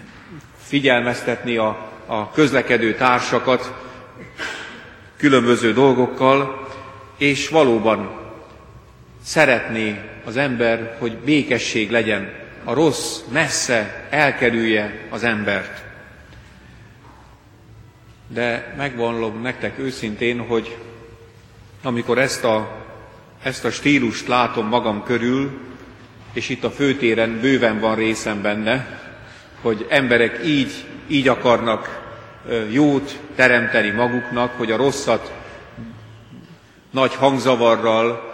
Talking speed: 85 wpm